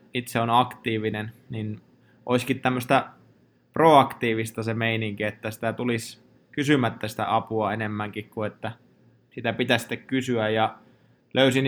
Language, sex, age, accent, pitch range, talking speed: Finnish, male, 20-39, native, 110-125 Hz, 125 wpm